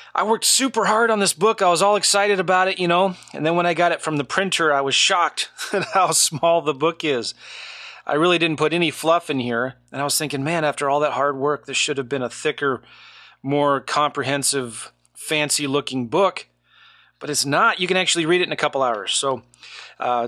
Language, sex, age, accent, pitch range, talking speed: English, male, 30-49, American, 140-180 Hz, 220 wpm